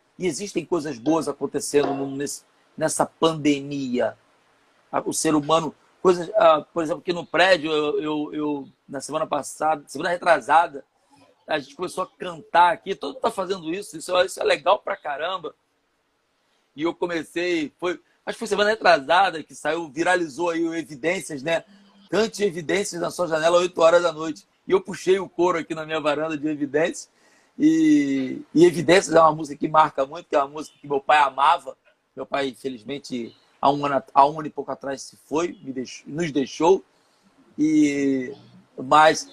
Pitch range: 145-180 Hz